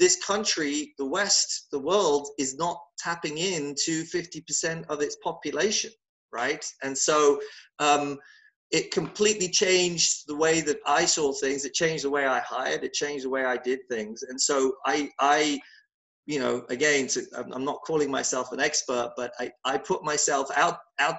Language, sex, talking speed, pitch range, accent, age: English, male, 175 wpm, 125-165 Hz, British, 30-49